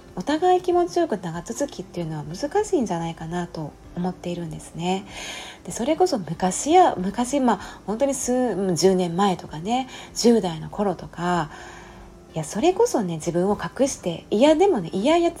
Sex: female